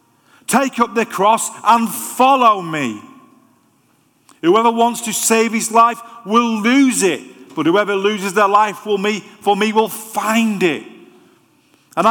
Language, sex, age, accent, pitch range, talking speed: English, male, 40-59, British, 185-230 Hz, 135 wpm